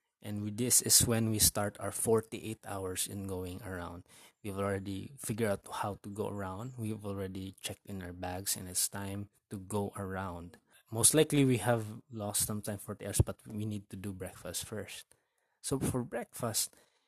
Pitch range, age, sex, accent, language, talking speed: 100-115 Hz, 20-39, male, Filipino, English, 185 wpm